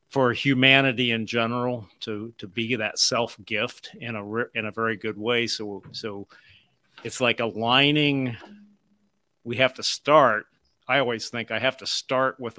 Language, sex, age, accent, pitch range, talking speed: English, male, 50-69, American, 105-130 Hz, 160 wpm